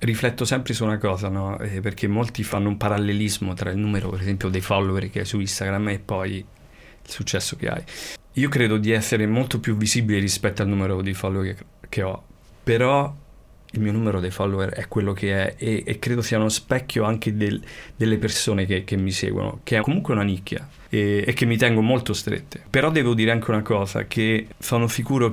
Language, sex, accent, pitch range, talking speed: Italian, male, native, 100-115 Hz, 205 wpm